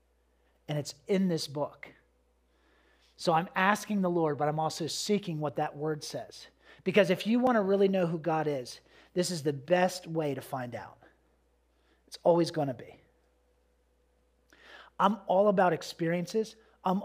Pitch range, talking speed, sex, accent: 145-195 Hz, 160 wpm, male, American